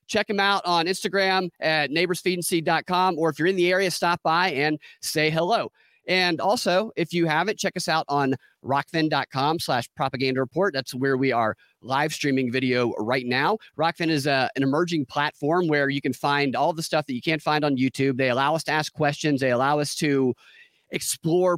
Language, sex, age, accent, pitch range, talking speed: English, male, 30-49, American, 140-175 Hz, 190 wpm